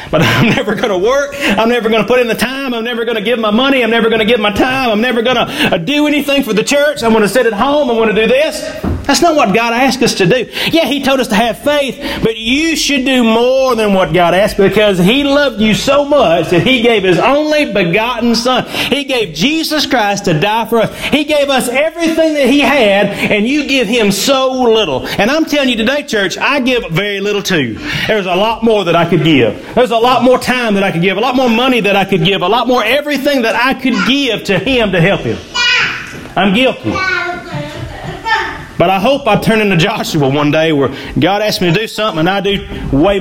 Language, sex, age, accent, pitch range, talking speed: English, male, 40-59, American, 200-265 Hz, 245 wpm